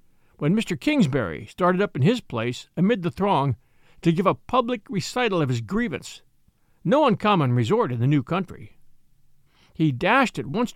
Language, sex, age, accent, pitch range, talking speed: English, male, 60-79, American, 140-220 Hz, 165 wpm